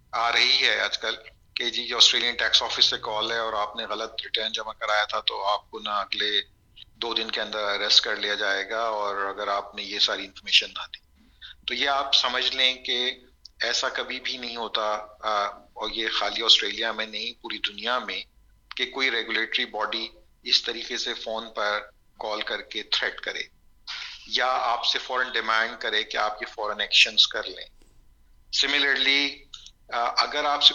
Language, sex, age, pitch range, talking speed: Urdu, male, 40-59, 105-125 Hz, 185 wpm